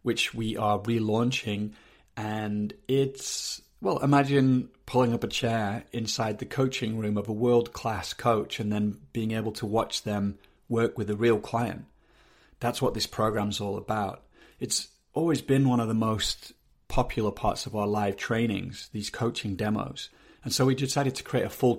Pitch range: 105-125 Hz